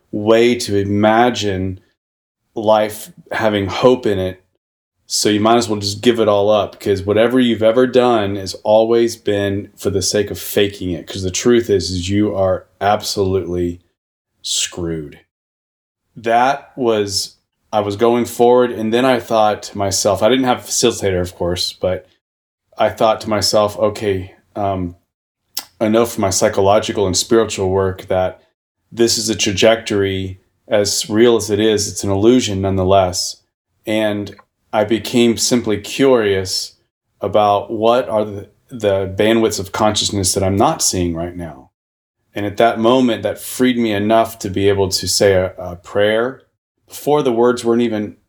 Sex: male